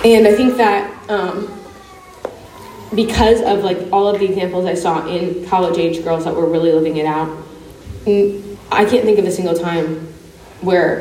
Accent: American